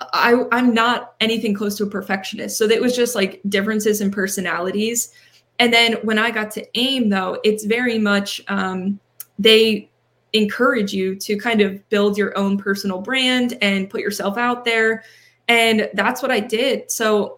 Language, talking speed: English, 175 wpm